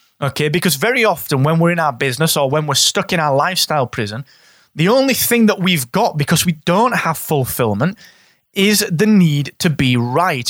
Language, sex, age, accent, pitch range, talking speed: English, male, 20-39, British, 135-185 Hz, 195 wpm